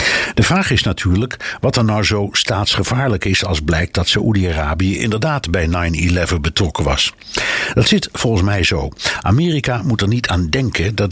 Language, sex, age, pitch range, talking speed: Dutch, male, 60-79, 85-115 Hz, 165 wpm